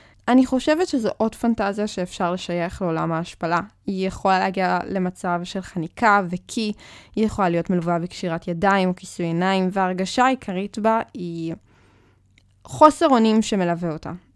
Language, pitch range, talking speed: Hebrew, 175-225 Hz, 140 wpm